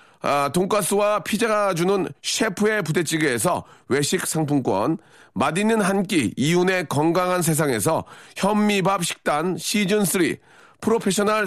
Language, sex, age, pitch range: Korean, male, 40-59, 170-215 Hz